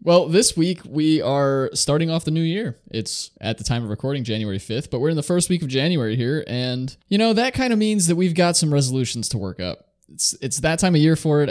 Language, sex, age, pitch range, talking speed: English, male, 20-39, 110-150 Hz, 260 wpm